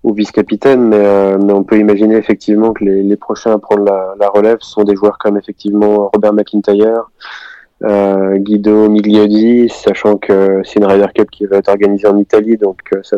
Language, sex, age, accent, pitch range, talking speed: French, male, 20-39, French, 100-115 Hz, 195 wpm